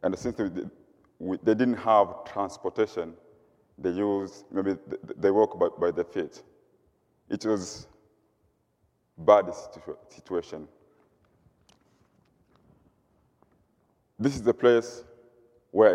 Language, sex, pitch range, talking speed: English, male, 95-140 Hz, 95 wpm